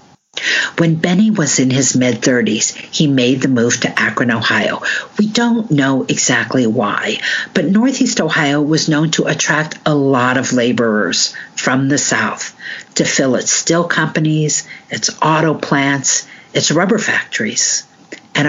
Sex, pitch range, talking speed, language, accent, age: female, 145-210 Hz, 145 wpm, English, American, 50-69